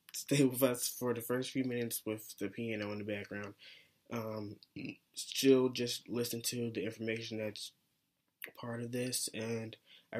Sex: male